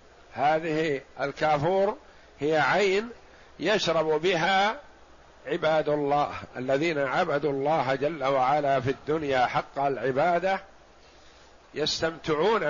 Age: 50-69